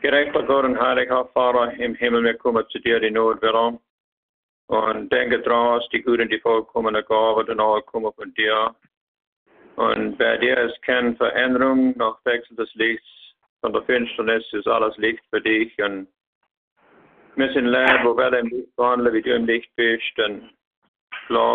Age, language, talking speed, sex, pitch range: 50-69, English, 175 wpm, male, 110-125 Hz